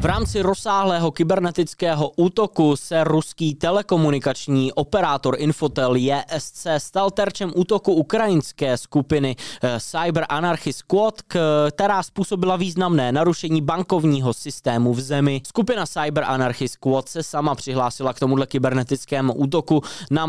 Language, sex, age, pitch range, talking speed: Czech, male, 20-39, 130-165 Hz, 115 wpm